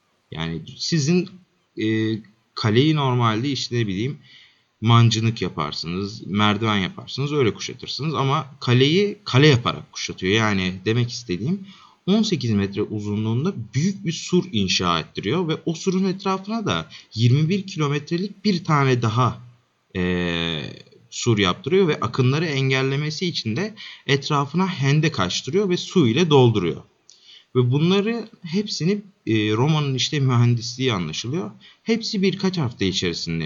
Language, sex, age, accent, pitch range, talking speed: Turkish, male, 30-49, native, 110-180 Hz, 120 wpm